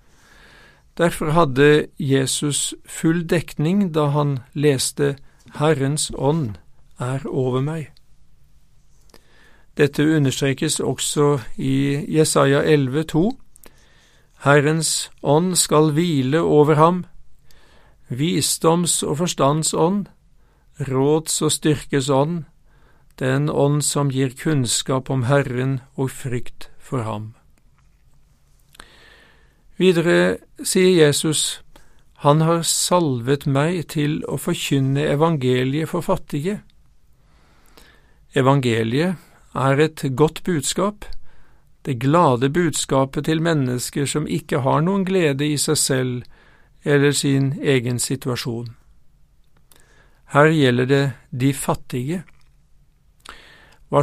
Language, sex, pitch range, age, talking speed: English, male, 135-160 Hz, 50-69, 95 wpm